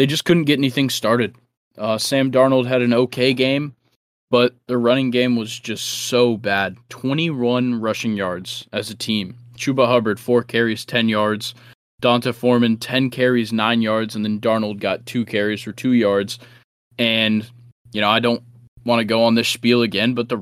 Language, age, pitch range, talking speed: English, 20-39, 105-120 Hz, 180 wpm